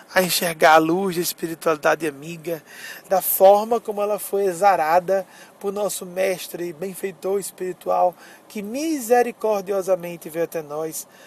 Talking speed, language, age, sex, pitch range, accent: 130 wpm, Portuguese, 20-39, male, 180-225 Hz, Brazilian